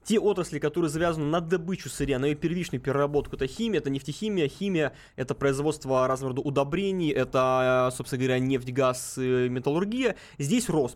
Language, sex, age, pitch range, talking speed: Russian, male, 20-39, 140-180 Hz, 155 wpm